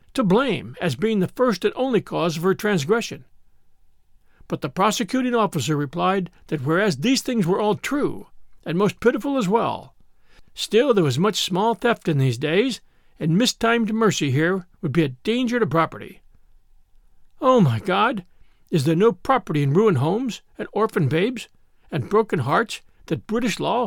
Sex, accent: male, American